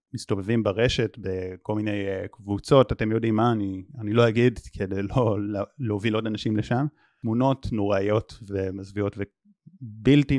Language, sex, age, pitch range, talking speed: Hebrew, male, 30-49, 100-135 Hz, 125 wpm